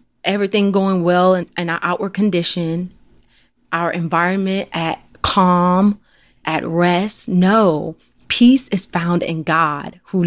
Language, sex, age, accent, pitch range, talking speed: English, female, 20-39, American, 170-205 Hz, 125 wpm